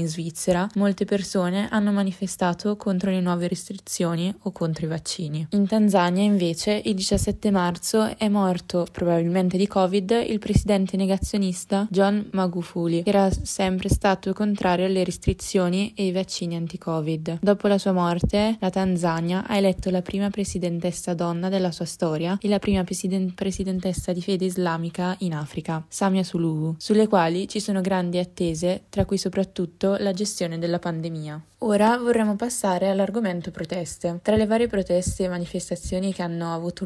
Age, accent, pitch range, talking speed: 20-39, native, 175-200 Hz, 155 wpm